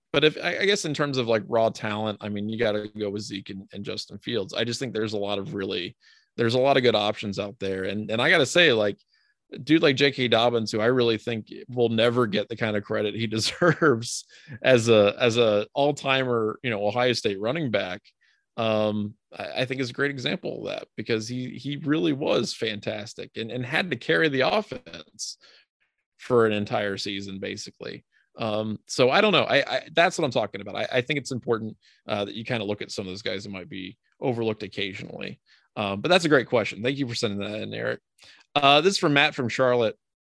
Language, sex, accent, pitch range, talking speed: English, male, American, 105-135 Hz, 230 wpm